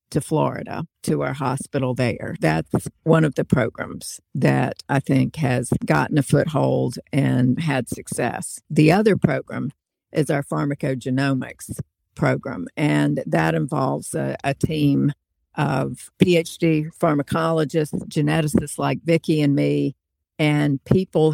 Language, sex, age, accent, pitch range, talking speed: English, female, 50-69, American, 135-160 Hz, 125 wpm